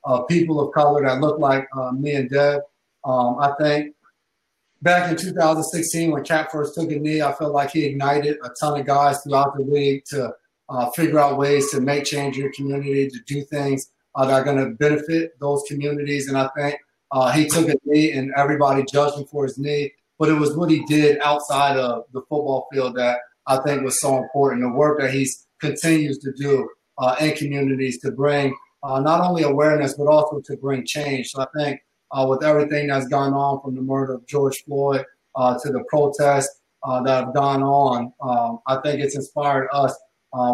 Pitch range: 130-145 Hz